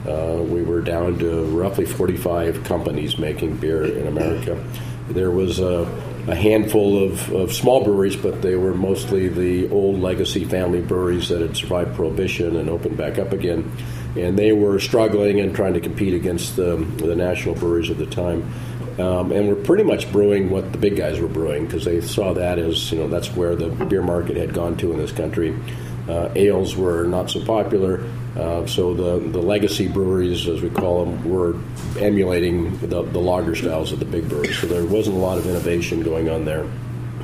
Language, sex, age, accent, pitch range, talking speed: English, male, 40-59, American, 85-100 Hz, 195 wpm